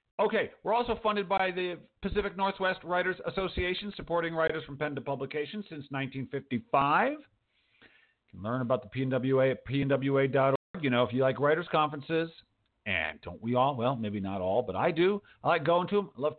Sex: male